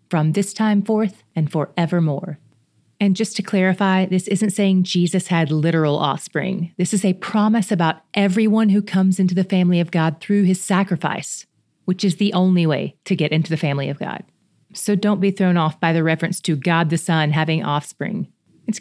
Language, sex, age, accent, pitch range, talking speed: English, female, 30-49, American, 165-205 Hz, 190 wpm